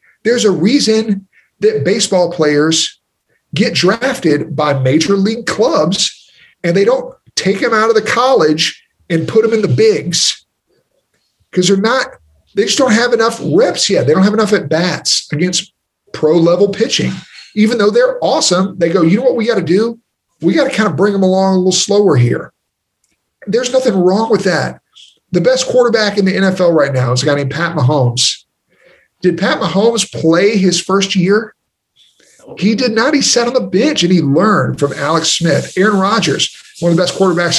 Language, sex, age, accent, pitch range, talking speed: English, male, 40-59, American, 170-225 Hz, 190 wpm